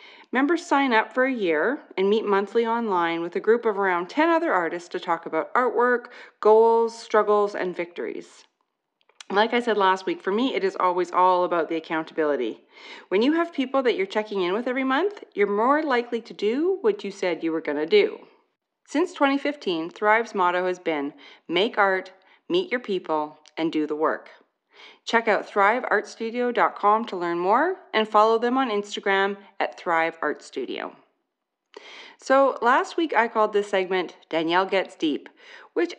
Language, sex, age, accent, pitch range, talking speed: English, female, 30-49, American, 180-265 Hz, 170 wpm